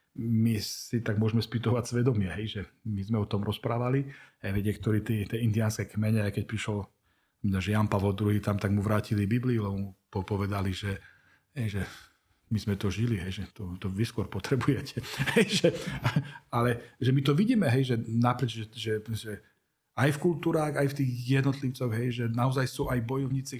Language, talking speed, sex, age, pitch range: Slovak, 180 wpm, male, 40-59, 110-130 Hz